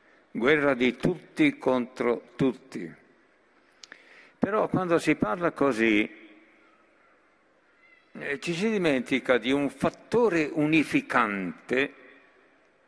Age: 60-79